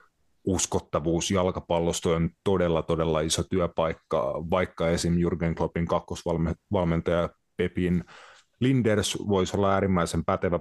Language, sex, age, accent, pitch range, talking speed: Finnish, male, 30-49, native, 85-95 Hz, 100 wpm